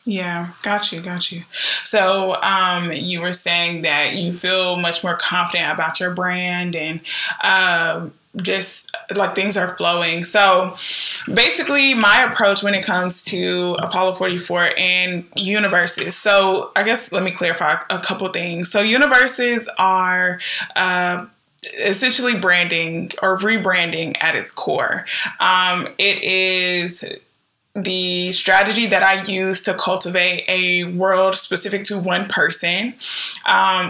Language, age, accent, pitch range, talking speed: English, 20-39, American, 180-200 Hz, 135 wpm